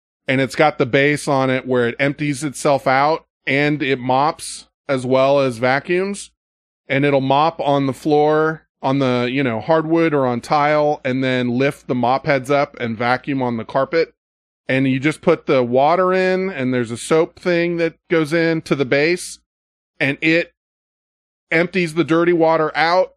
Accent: American